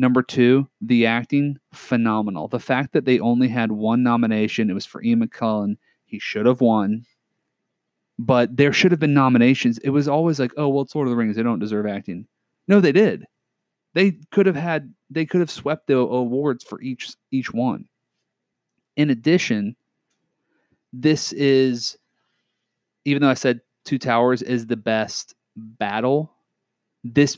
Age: 30-49